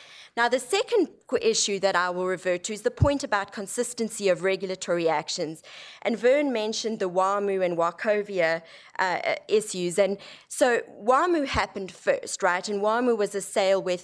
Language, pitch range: English, 185-255 Hz